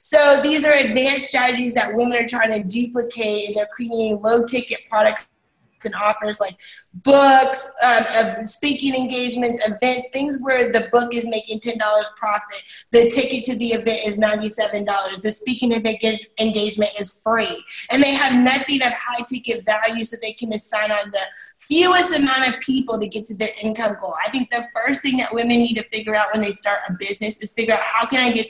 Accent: American